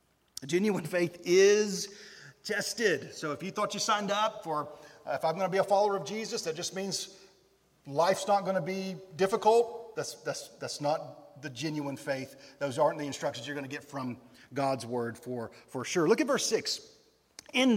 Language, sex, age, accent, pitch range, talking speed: English, male, 40-59, American, 150-210 Hz, 195 wpm